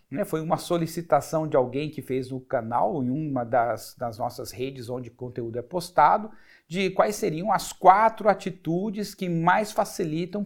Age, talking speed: 50-69, 165 wpm